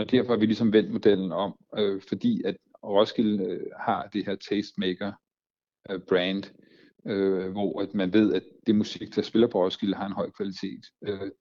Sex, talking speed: male, 185 wpm